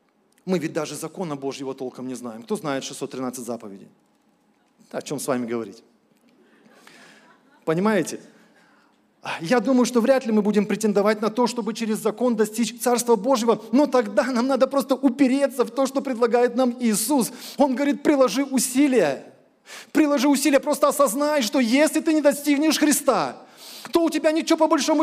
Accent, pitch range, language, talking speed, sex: native, 220-285 Hz, Russian, 160 wpm, male